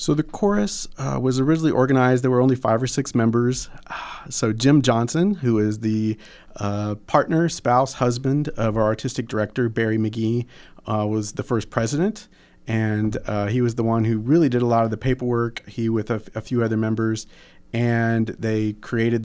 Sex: male